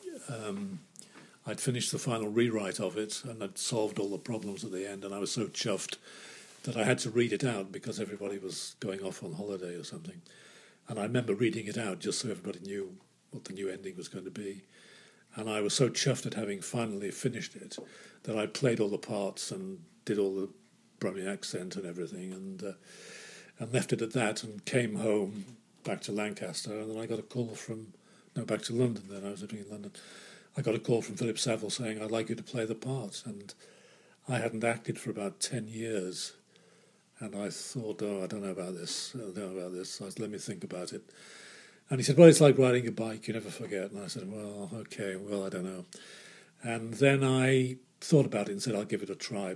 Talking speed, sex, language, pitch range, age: 230 wpm, male, English, 100-130 Hz, 50-69